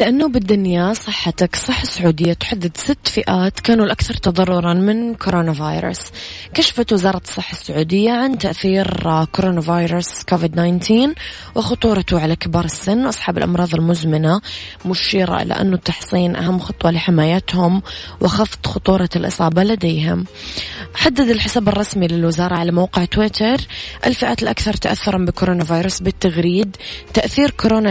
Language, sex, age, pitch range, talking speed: Arabic, female, 20-39, 170-205 Hz, 125 wpm